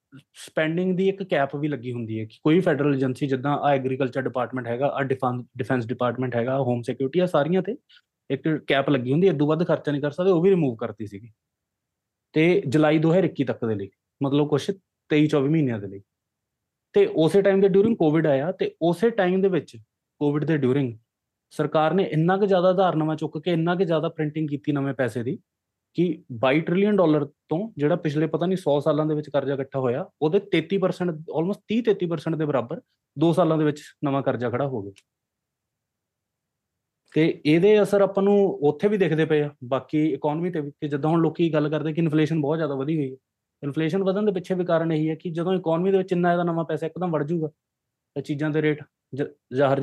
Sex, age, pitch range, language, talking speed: male, 20-39, 135-170 Hz, Punjabi, 165 wpm